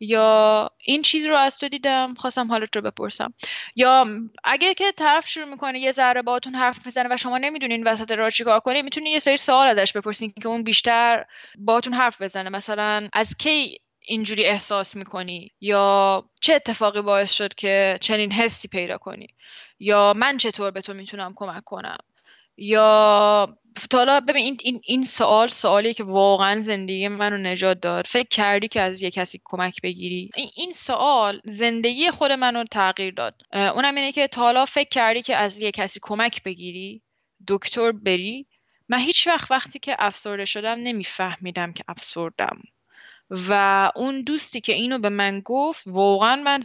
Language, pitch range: Persian, 200-255 Hz